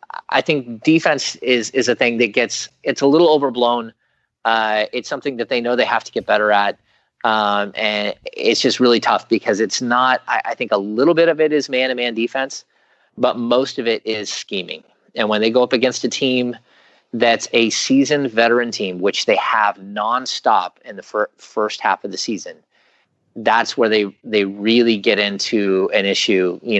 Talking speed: 195 wpm